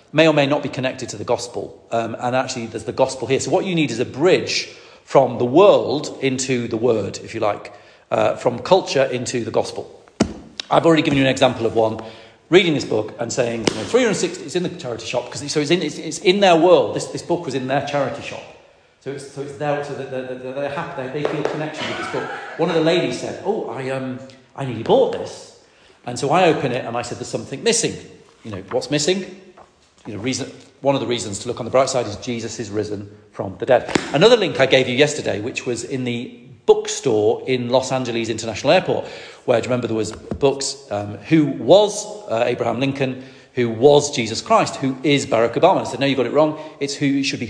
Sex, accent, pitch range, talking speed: male, British, 120-155 Hz, 240 wpm